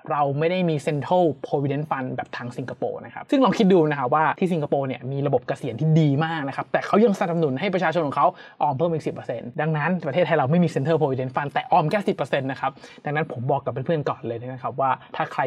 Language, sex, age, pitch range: Thai, male, 20-39, 140-170 Hz